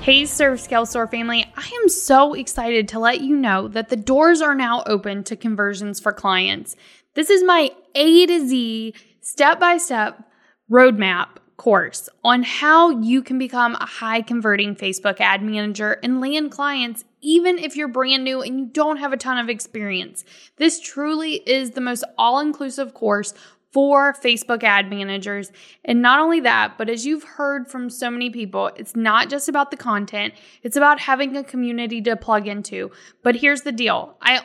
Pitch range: 220-285 Hz